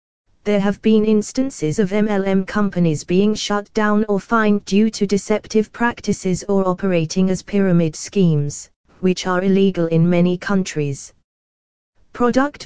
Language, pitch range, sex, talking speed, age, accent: English, 170-210 Hz, female, 135 wpm, 20-39, British